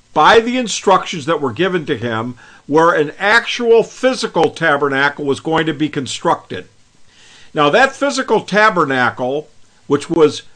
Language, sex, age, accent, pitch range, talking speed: English, male, 50-69, American, 145-205 Hz, 135 wpm